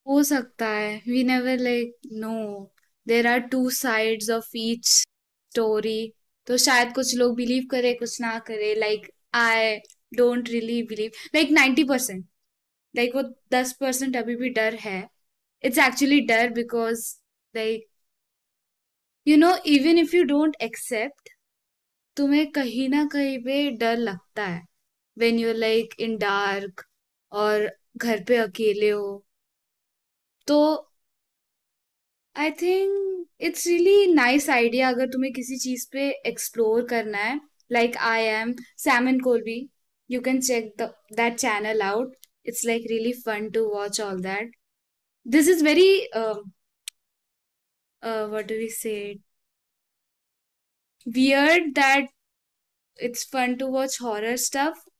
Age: 10-29